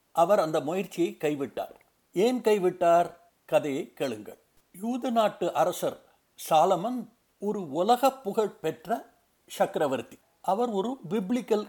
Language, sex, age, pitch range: Tamil, male, 60-79, 175-230 Hz